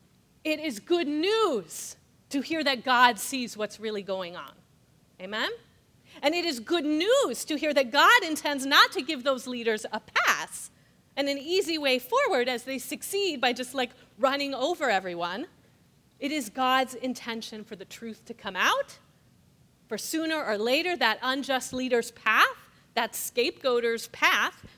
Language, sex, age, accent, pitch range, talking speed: English, female, 30-49, American, 220-290 Hz, 160 wpm